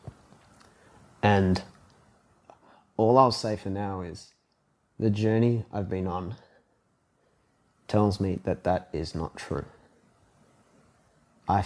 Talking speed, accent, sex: 105 wpm, Australian, male